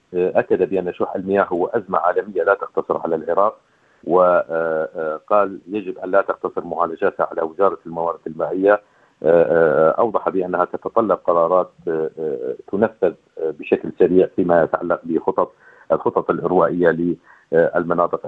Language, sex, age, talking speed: Arabic, male, 50-69, 110 wpm